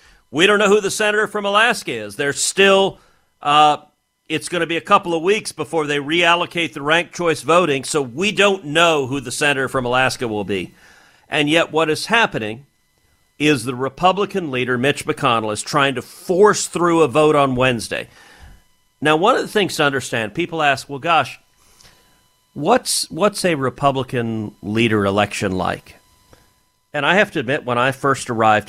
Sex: male